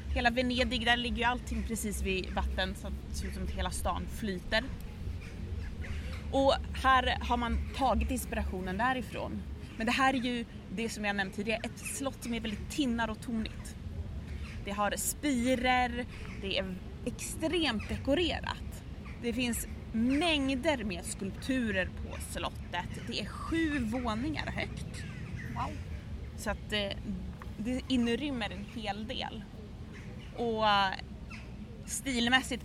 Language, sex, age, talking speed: Swedish, female, 20-39, 125 wpm